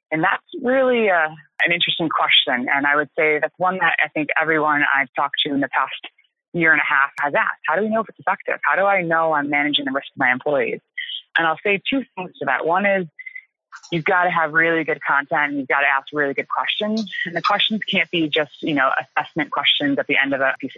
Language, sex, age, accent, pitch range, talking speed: English, female, 20-39, American, 145-205 Hz, 250 wpm